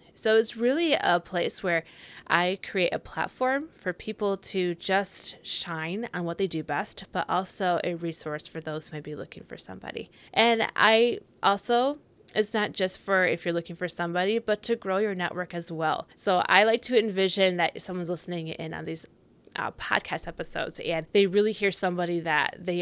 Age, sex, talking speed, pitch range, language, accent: 20-39, female, 190 wpm, 170-205 Hz, English, American